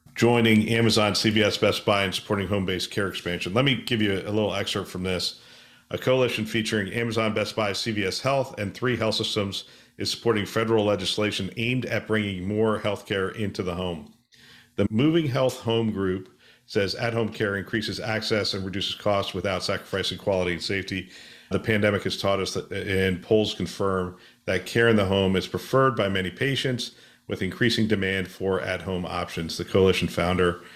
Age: 50-69